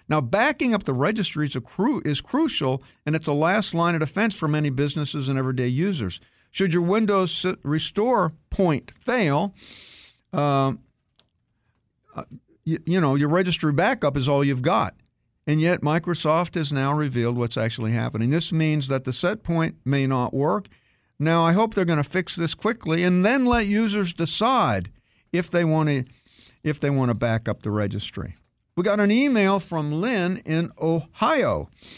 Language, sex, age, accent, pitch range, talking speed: English, male, 50-69, American, 130-180 Hz, 165 wpm